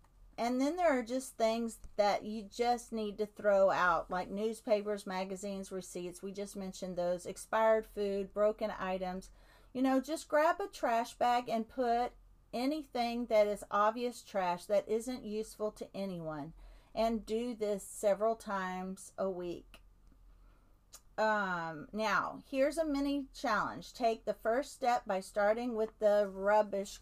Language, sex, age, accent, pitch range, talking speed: English, female, 40-59, American, 195-240 Hz, 145 wpm